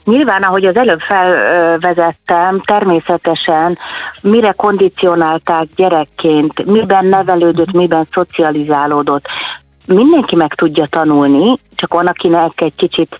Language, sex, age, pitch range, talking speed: Hungarian, female, 30-49, 160-205 Hz, 100 wpm